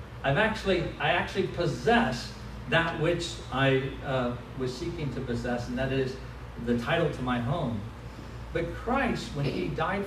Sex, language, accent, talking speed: male, English, American, 155 wpm